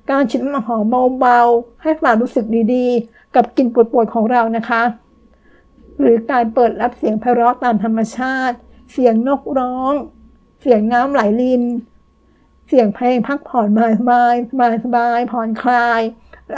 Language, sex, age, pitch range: Thai, female, 60-79, 230-255 Hz